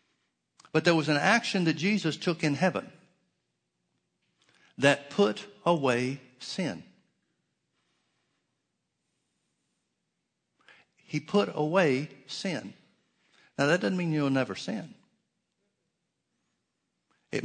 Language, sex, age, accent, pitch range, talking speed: English, male, 60-79, American, 125-165 Hz, 90 wpm